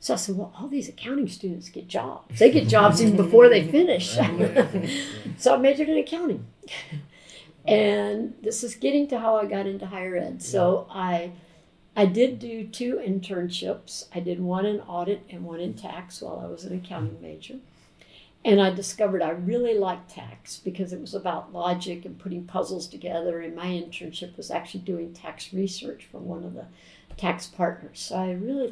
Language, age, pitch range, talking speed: English, 60-79, 175-215 Hz, 185 wpm